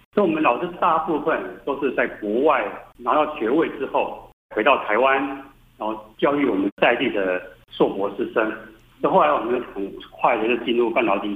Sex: male